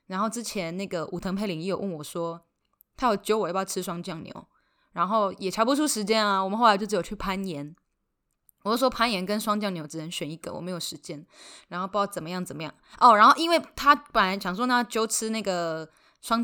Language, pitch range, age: Chinese, 185-240 Hz, 20-39